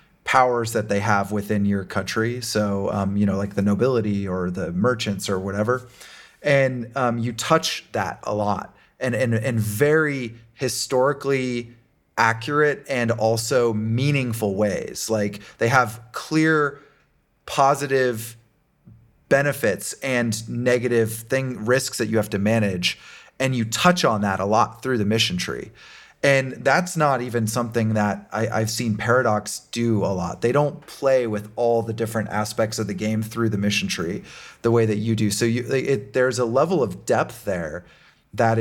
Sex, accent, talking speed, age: male, American, 160 wpm, 30-49